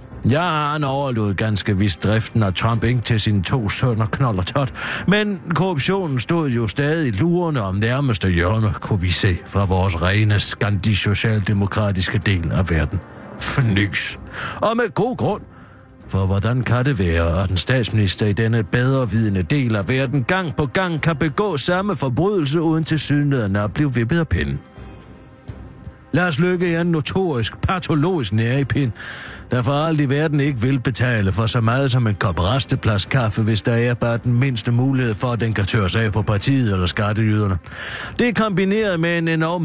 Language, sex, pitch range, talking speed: Danish, male, 105-145 Hz, 175 wpm